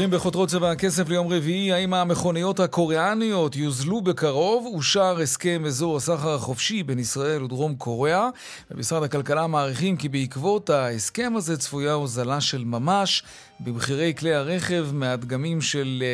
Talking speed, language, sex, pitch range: 115 wpm, Hebrew, male, 135-185 Hz